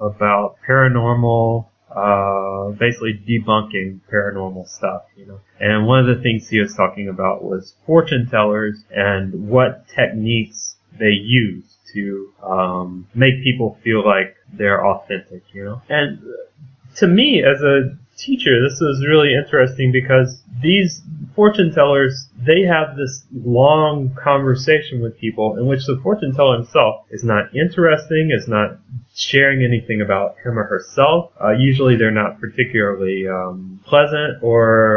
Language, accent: English, American